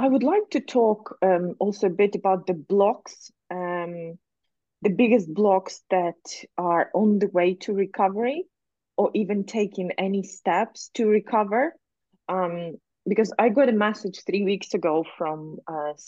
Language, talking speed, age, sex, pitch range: English, 155 wpm, 20-39, female, 165-210 Hz